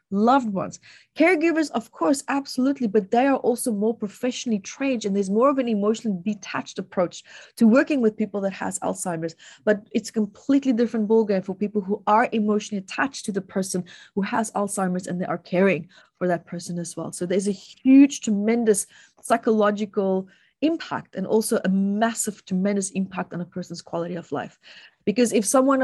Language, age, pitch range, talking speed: English, 30-49, 195-250 Hz, 180 wpm